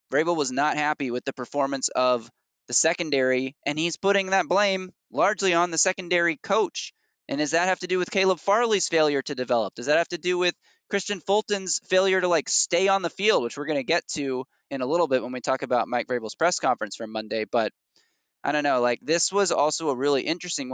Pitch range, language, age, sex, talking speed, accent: 120-170 Hz, English, 20-39, male, 225 wpm, American